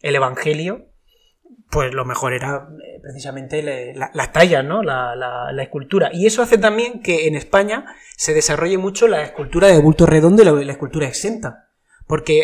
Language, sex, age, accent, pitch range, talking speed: Spanish, male, 30-49, Spanish, 150-185 Hz, 160 wpm